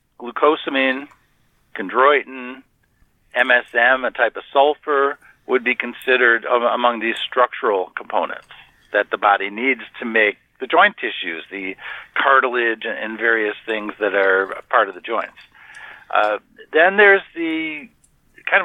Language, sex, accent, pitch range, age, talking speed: English, male, American, 115-140 Hz, 50-69, 125 wpm